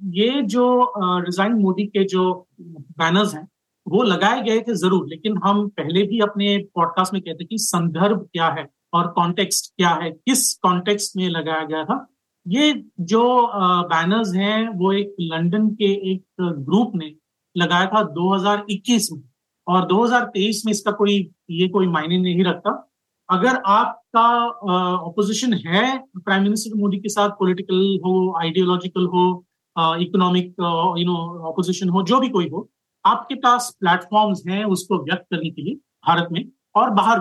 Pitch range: 175-210 Hz